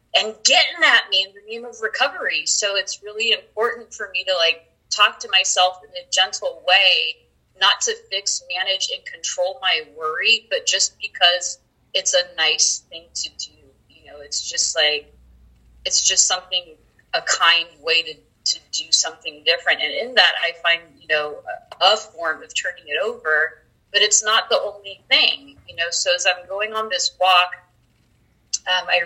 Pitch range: 175-250 Hz